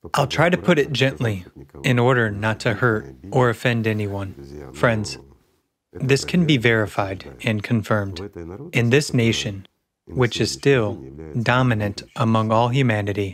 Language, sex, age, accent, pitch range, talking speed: English, male, 30-49, American, 100-130 Hz, 140 wpm